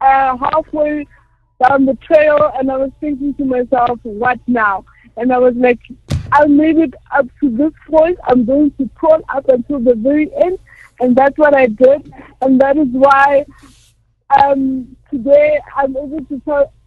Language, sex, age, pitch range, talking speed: English, female, 50-69, 260-295 Hz, 170 wpm